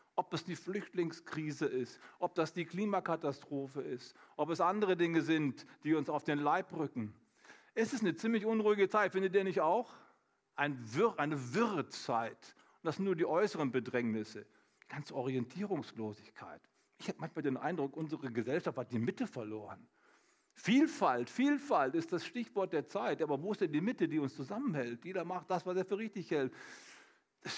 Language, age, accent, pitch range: German, 50-69, German, 145-210 Hz